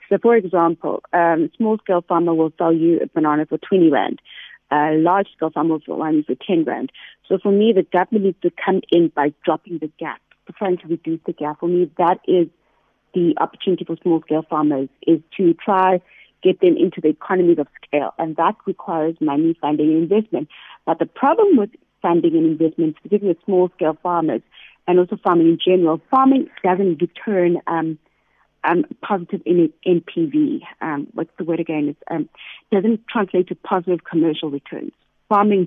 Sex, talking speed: female, 175 wpm